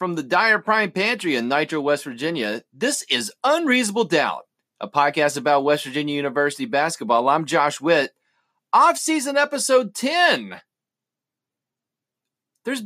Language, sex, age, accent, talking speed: English, male, 40-59, American, 125 wpm